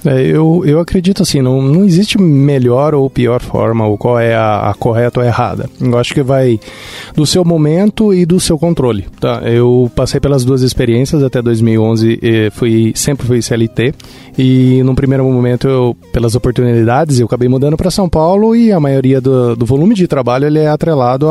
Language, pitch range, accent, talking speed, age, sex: Portuguese, 120-160 Hz, Brazilian, 190 wpm, 20-39, male